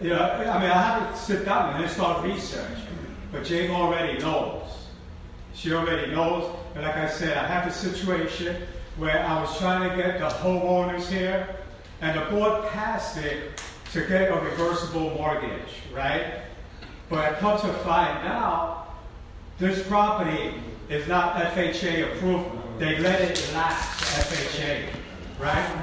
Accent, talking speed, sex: American, 150 wpm, male